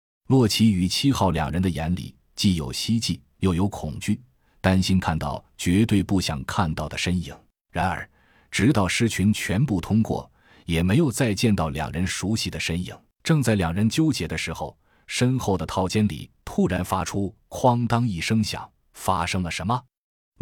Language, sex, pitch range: Chinese, male, 80-105 Hz